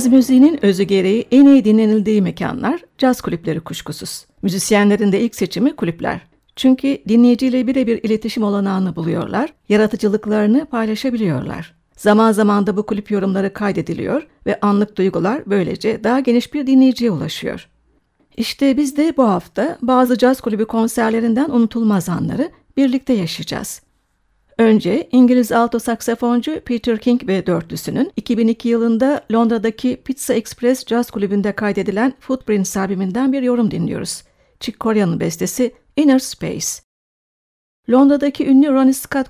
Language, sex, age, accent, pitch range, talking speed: Turkish, female, 60-79, native, 205-255 Hz, 125 wpm